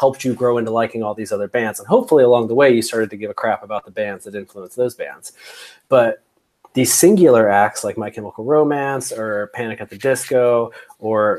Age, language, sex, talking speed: 20-39, English, male, 215 wpm